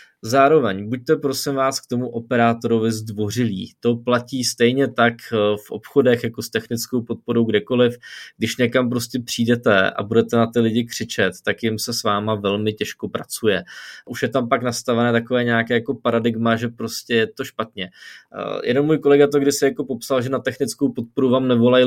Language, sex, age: Czech, male, 20-39